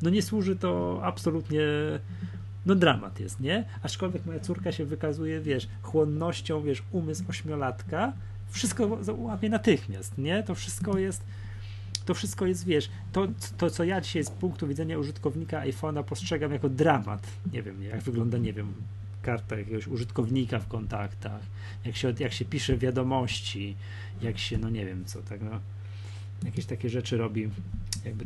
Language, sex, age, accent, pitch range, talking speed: Polish, male, 30-49, native, 100-145 Hz, 155 wpm